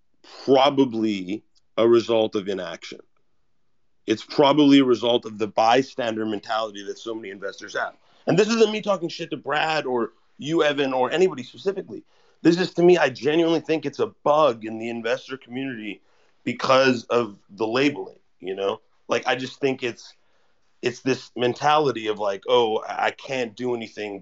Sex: male